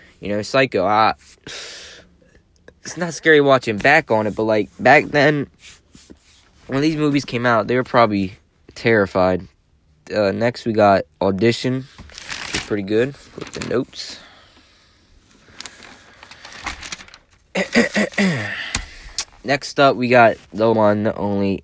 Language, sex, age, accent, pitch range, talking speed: English, male, 20-39, American, 95-130 Hz, 120 wpm